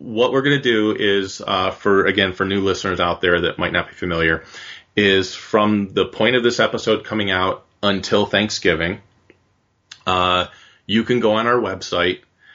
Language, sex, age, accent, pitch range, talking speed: English, male, 30-49, American, 90-105 Hz, 175 wpm